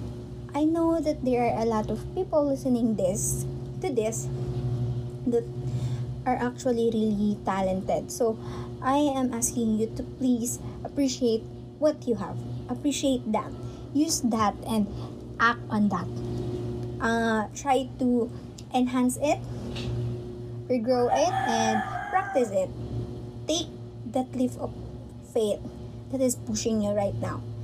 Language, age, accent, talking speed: English, 20-39, Filipino, 125 wpm